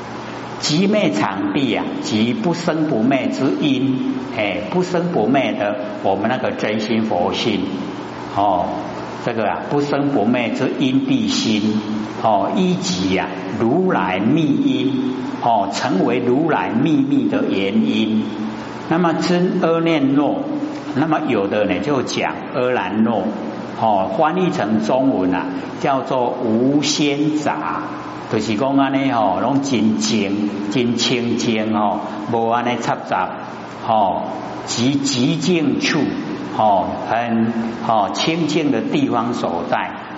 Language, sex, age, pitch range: Chinese, male, 60-79, 110-180 Hz